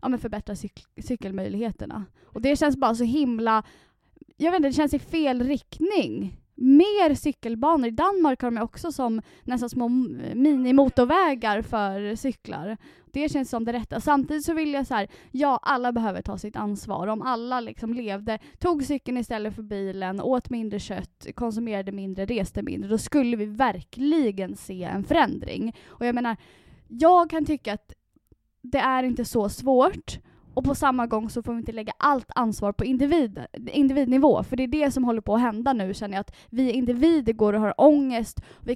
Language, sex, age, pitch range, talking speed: Swedish, female, 20-39, 215-275 Hz, 180 wpm